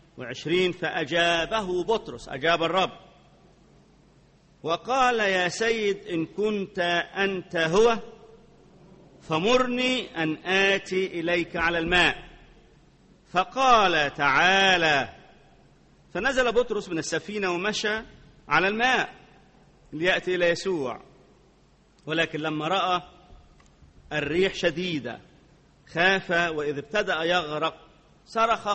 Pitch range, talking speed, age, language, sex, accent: 150-195 Hz, 80 wpm, 40-59, English, male, Lebanese